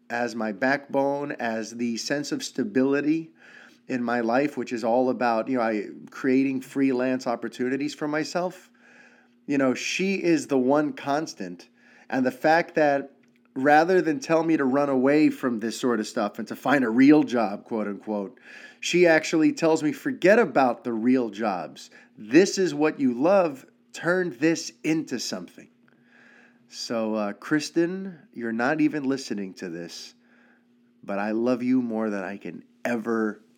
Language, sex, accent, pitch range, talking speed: English, male, American, 115-150 Hz, 160 wpm